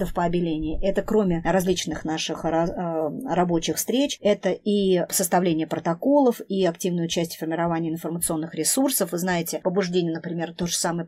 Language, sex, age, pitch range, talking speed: Russian, male, 40-59, 170-215 Hz, 135 wpm